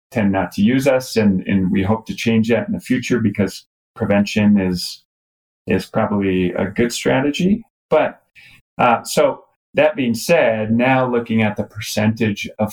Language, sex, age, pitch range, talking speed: English, male, 30-49, 90-110 Hz, 165 wpm